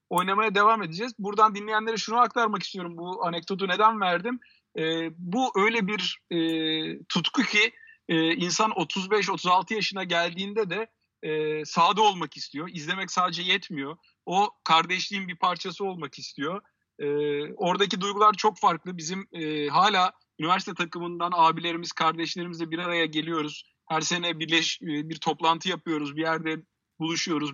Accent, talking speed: native, 135 wpm